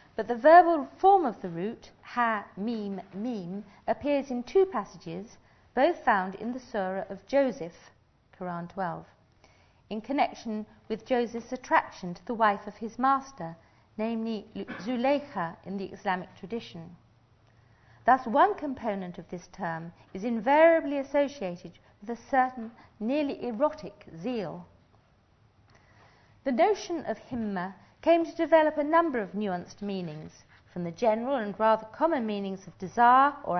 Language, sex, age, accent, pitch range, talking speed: English, female, 50-69, British, 180-275 Hz, 135 wpm